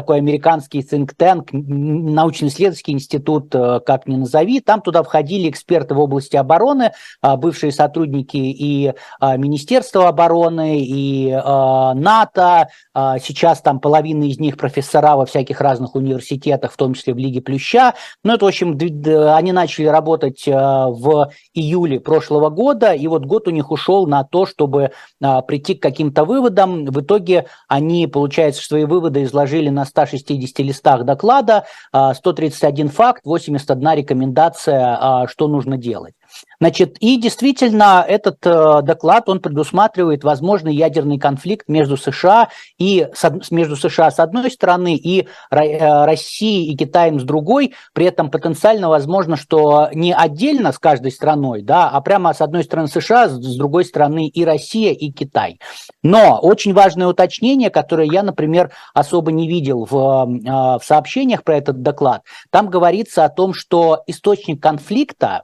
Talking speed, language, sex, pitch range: 140 wpm, Russian, male, 140-180 Hz